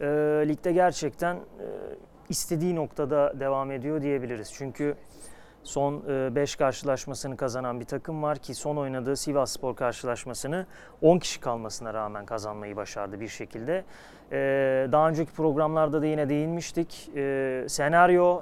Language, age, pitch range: Turkish, 30-49, 135-165 Hz